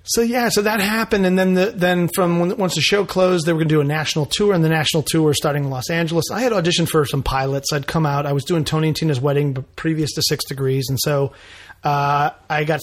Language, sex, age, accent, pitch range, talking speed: English, male, 30-49, American, 135-160 Hz, 265 wpm